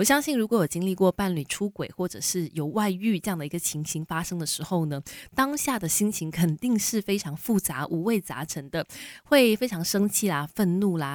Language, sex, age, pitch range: Chinese, female, 20-39, 165-225 Hz